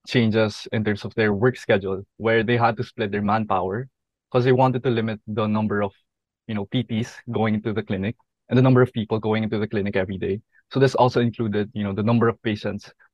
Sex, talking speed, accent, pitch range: male, 230 wpm, Filipino, 105-125 Hz